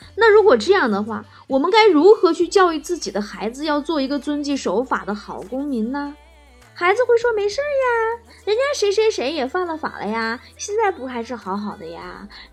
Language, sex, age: Chinese, female, 20-39